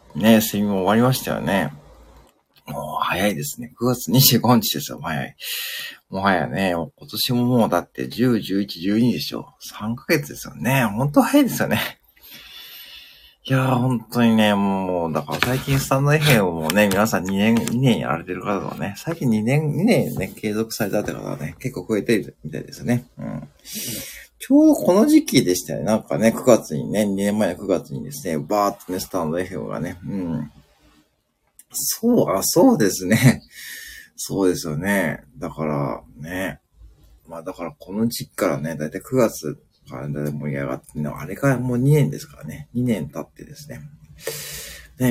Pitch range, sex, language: 85-130 Hz, male, Japanese